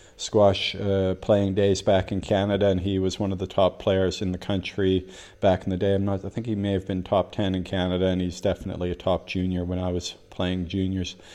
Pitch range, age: 95-105 Hz, 40-59